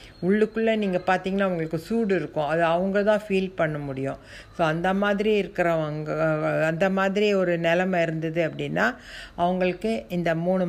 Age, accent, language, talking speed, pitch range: 50-69, native, Tamil, 140 wpm, 160-190 Hz